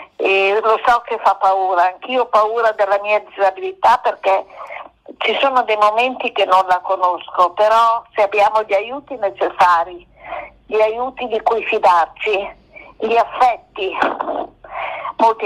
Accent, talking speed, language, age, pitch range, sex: native, 130 wpm, Italian, 50-69, 195-225 Hz, female